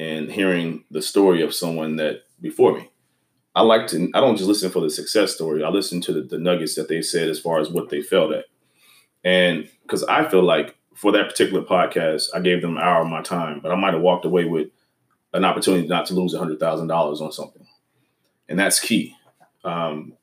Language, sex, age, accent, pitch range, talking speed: English, male, 30-49, American, 80-90 Hz, 215 wpm